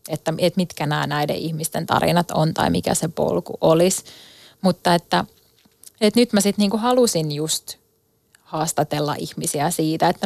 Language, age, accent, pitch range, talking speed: Finnish, 20-39, native, 160-190 Hz, 150 wpm